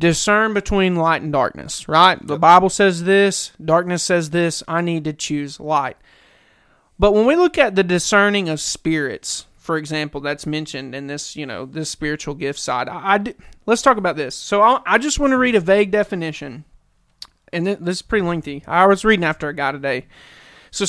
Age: 30-49